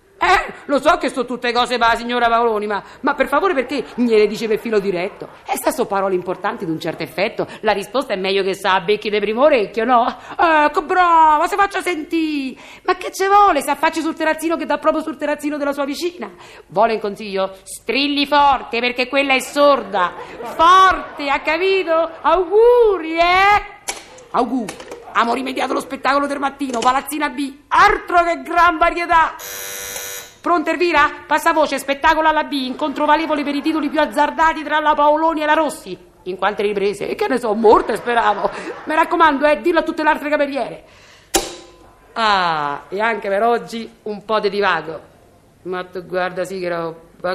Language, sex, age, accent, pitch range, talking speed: Italian, female, 50-69, native, 220-310 Hz, 180 wpm